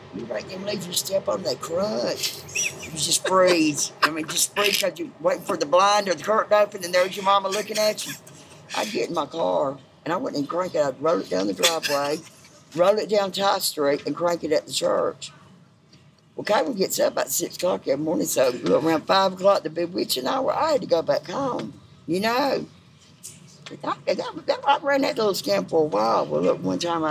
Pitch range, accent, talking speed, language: 130-185 Hz, American, 215 wpm, English